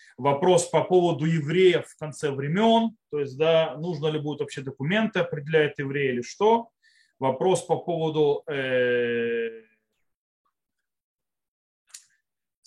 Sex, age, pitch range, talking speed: male, 30-49, 155-220 Hz, 110 wpm